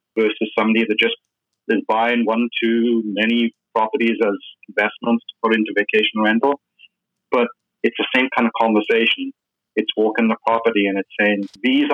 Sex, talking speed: male, 160 wpm